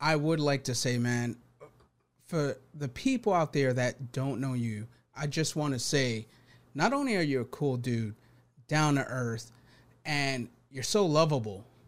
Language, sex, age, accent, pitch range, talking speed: English, male, 30-49, American, 125-155 Hz, 170 wpm